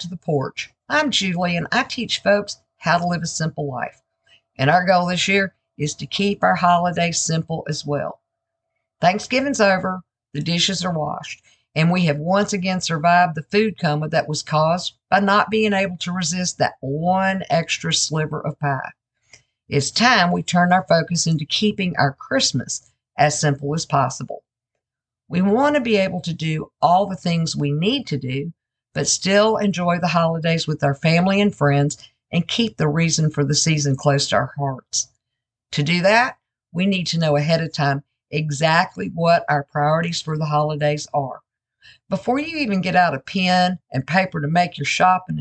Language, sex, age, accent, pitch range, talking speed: English, female, 50-69, American, 145-190 Hz, 180 wpm